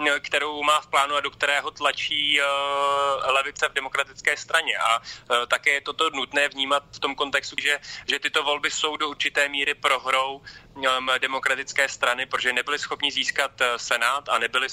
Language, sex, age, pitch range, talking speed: Slovak, male, 30-49, 125-145 Hz, 160 wpm